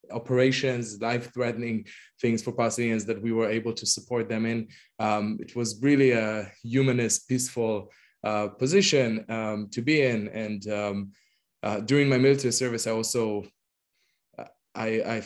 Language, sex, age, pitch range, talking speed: English, male, 20-39, 105-120 Hz, 150 wpm